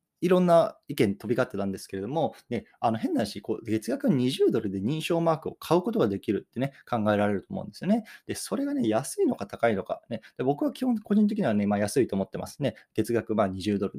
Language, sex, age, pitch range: Japanese, male, 20-39, 105-165 Hz